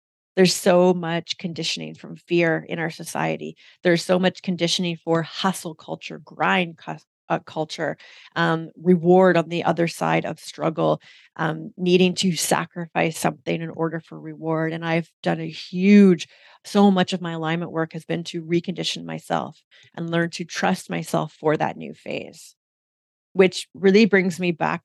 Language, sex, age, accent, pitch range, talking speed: English, female, 30-49, American, 160-180 Hz, 160 wpm